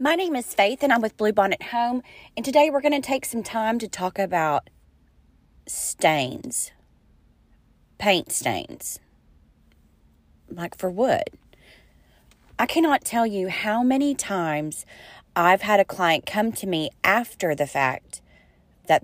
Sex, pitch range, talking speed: female, 150-225 Hz, 140 wpm